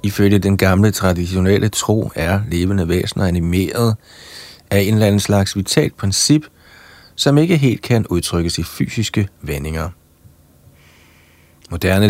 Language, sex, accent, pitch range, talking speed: Danish, male, native, 85-110 Hz, 125 wpm